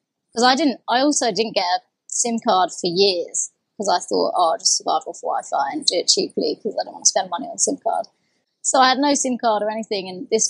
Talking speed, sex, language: 250 wpm, female, English